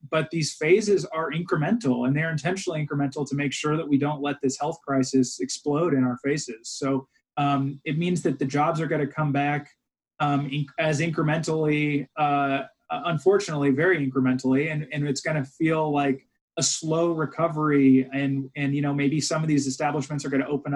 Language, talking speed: English, 190 wpm